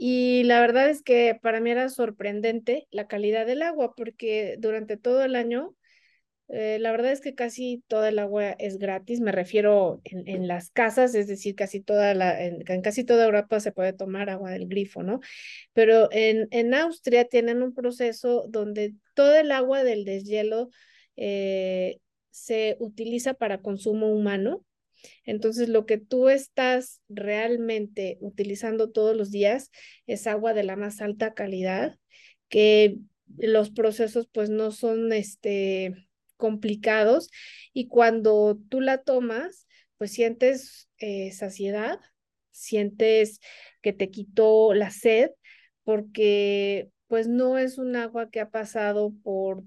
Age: 30-49